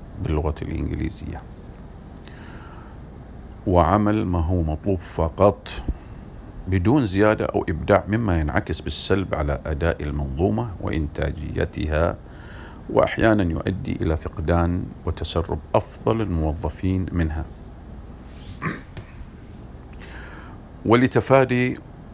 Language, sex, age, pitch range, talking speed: English, male, 50-69, 80-100 Hz, 75 wpm